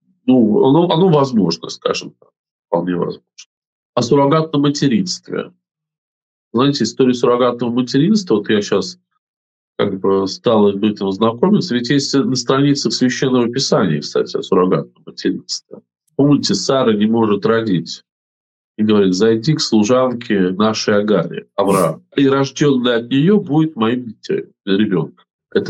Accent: native